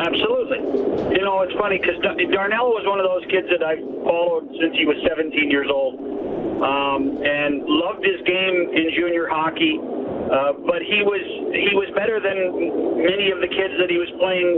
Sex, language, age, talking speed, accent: male, English, 50-69, 185 wpm, American